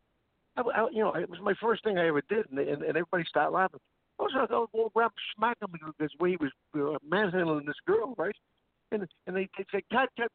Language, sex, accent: English, male, American